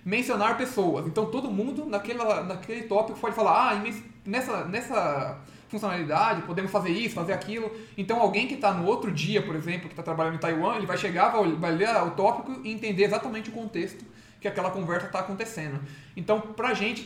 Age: 20-39